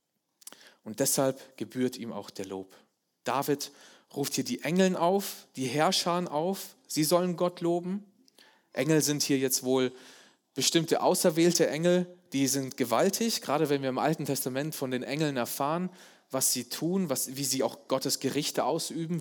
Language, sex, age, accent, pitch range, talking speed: German, male, 30-49, German, 135-175 Hz, 155 wpm